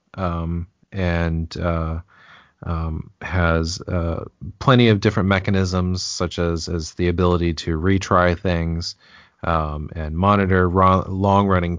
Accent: American